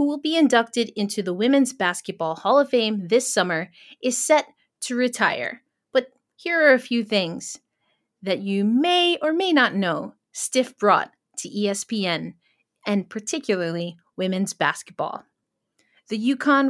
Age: 30-49